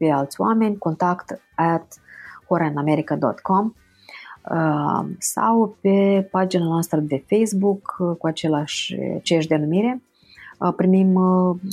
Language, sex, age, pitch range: Romanian, female, 30-49, 150-185 Hz